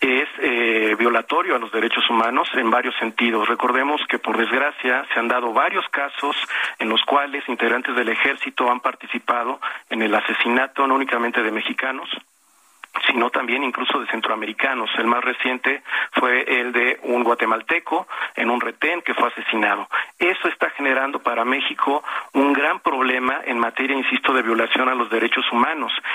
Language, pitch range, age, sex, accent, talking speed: Spanish, 120-150 Hz, 40-59, male, Mexican, 160 wpm